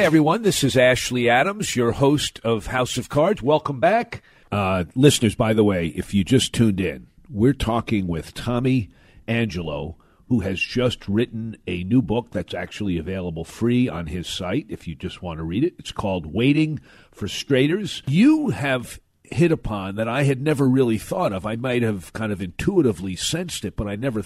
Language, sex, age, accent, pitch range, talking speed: English, male, 50-69, American, 100-140 Hz, 190 wpm